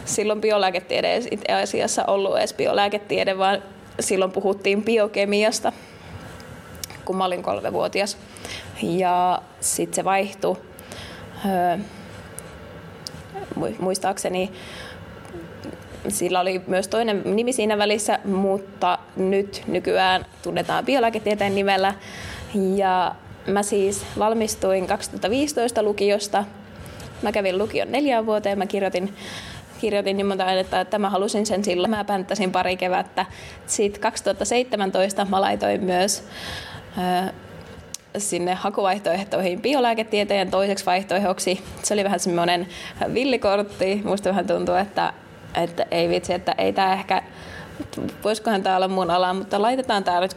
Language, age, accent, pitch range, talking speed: Finnish, 20-39, native, 185-210 Hz, 110 wpm